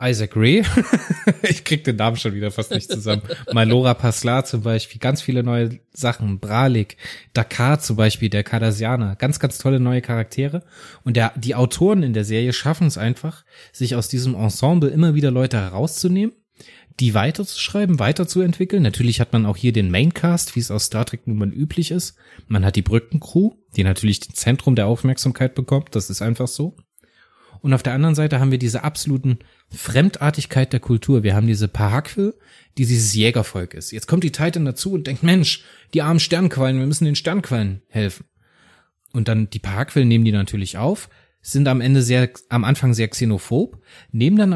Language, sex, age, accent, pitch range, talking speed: German, male, 20-39, German, 110-155 Hz, 180 wpm